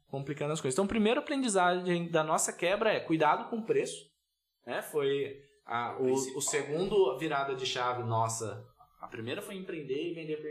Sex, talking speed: male, 175 wpm